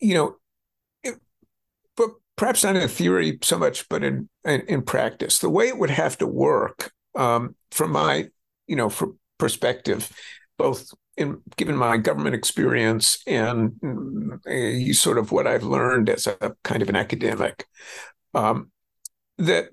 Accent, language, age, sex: American, English, 50-69, male